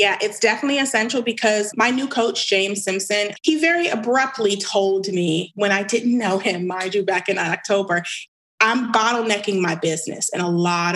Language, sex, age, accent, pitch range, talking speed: English, female, 30-49, American, 185-235 Hz, 175 wpm